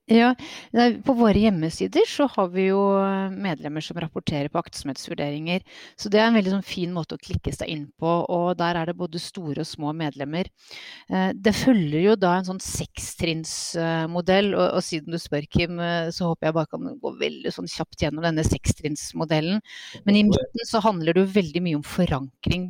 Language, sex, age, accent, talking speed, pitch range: English, female, 30-49, Swedish, 180 wpm, 160-185 Hz